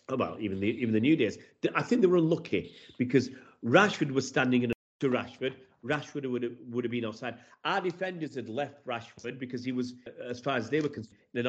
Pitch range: 110-140 Hz